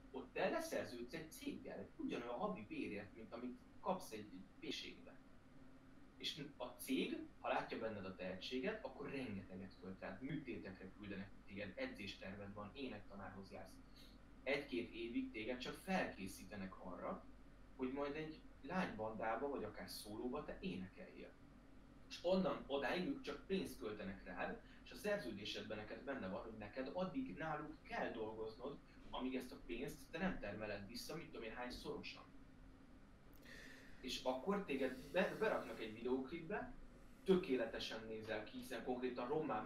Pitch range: 105-140 Hz